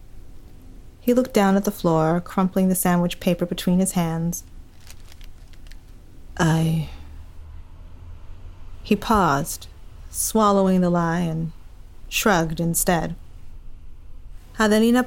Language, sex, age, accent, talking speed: English, female, 30-49, American, 90 wpm